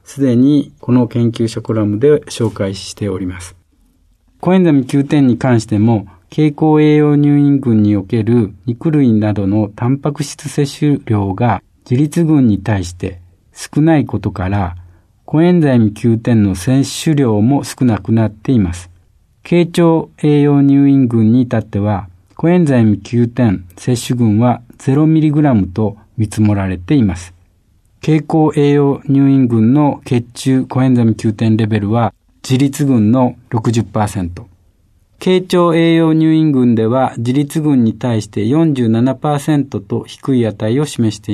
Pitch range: 105-145 Hz